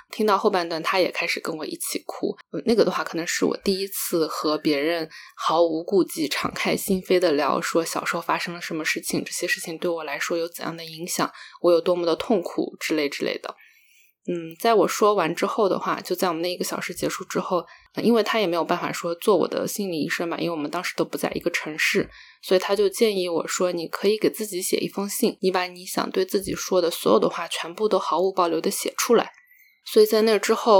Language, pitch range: Chinese, 170-205 Hz